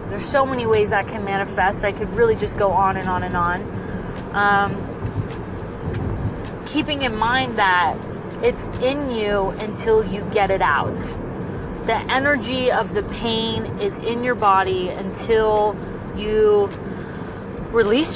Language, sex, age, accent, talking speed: English, female, 20-39, American, 140 wpm